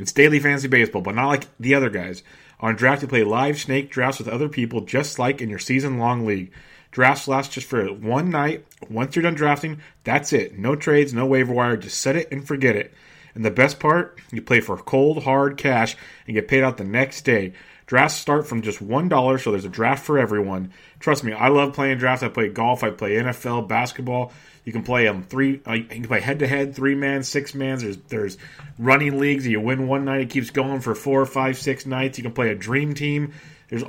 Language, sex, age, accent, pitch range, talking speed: English, male, 30-49, American, 120-145 Hz, 230 wpm